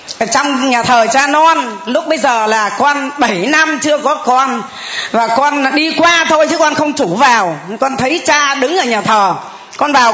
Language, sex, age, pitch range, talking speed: Vietnamese, female, 20-39, 235-315 Hz, 205 wpm